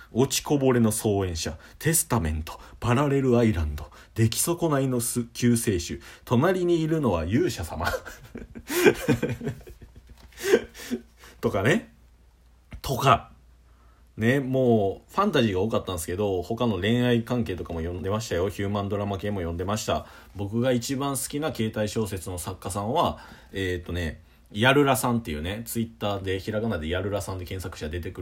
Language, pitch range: Japanese, 80-120 Hz